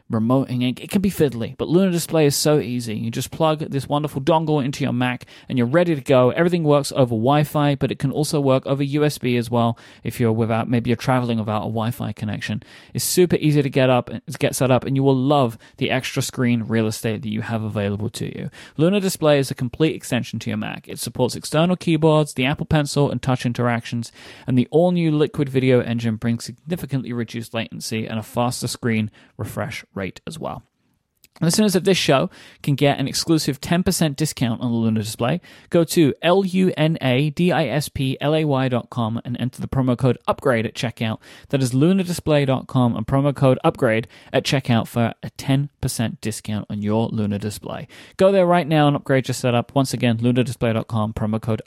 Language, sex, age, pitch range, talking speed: English, male, 30-49, 115-150 Hz, 195 wpm